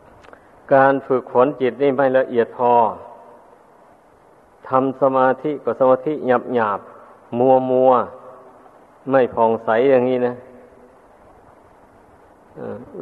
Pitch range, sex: 115-130 Hz, male